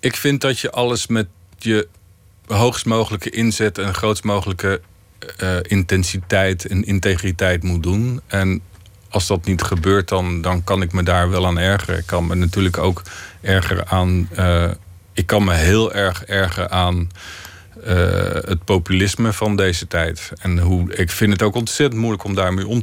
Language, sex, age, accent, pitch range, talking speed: Dutch, male, 40-59, Dutch, 90-110 Hz, 170 wpm